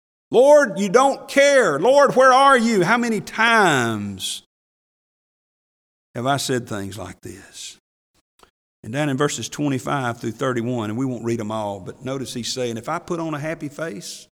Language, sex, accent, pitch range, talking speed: English, male, American, 110-180 Hz, 170 wpm